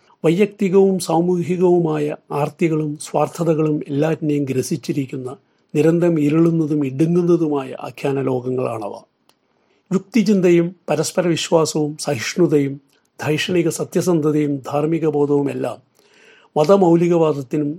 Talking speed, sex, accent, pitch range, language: 55 wpm, male, native, 140-170 Hz, Malayalam